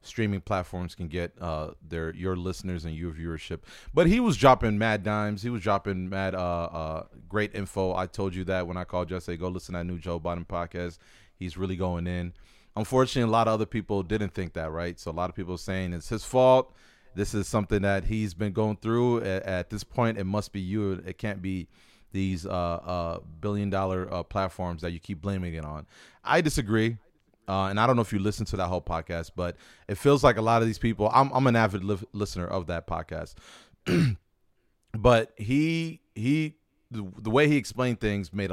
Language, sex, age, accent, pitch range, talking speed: English, male, 30-49, American, 90-110 Hz, 215 wpm